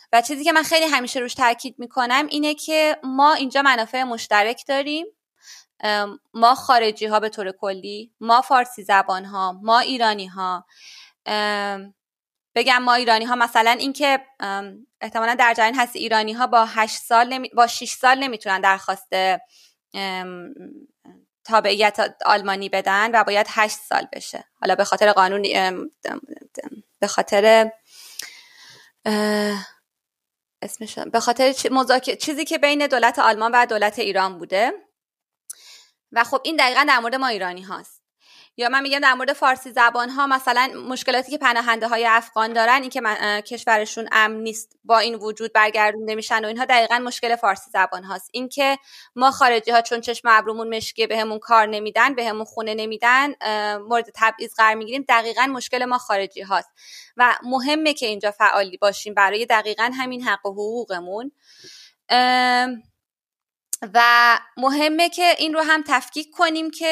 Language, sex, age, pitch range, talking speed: Persian, female, 20-39, 215-260 Hz, 145 wpm